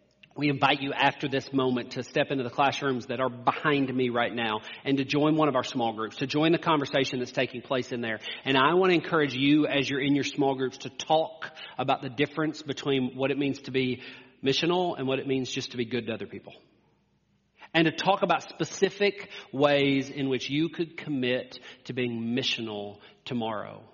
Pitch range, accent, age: 130-165 Hz, American, 40-59